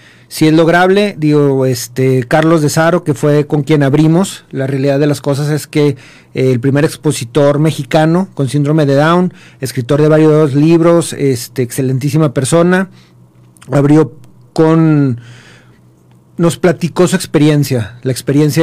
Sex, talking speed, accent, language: male, 140 wpm, Mexican, Spanish